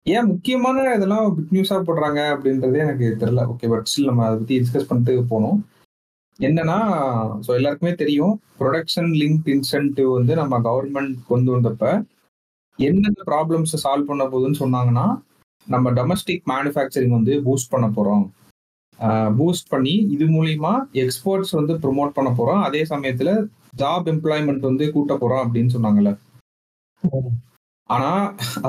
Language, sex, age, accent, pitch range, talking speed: Tamil, male, 30-49, native, 120-155 Hz, 130 wpm